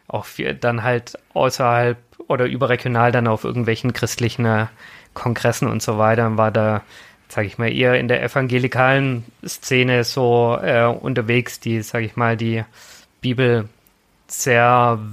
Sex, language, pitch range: male, German, 115-130 Hz